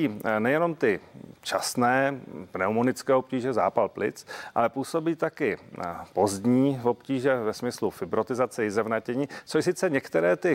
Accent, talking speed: native, 120 wpm